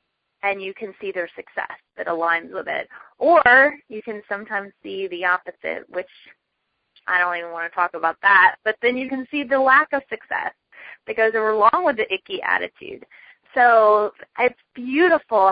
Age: 20-39